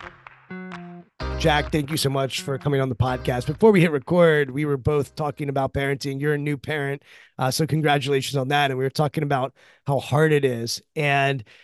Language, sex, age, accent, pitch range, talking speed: English, male, 30-49, American, 140-160 Hz, 200 wpm